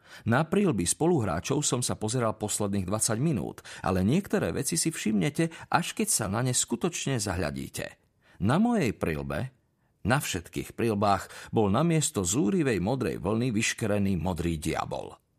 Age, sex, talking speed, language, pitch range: 50-69, male, 140 wpm, Slovak, 95-140 Hz